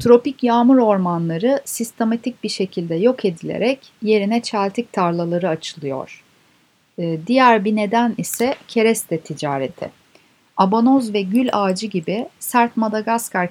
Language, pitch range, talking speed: Turkish, 170-230 Hz, 110 wpm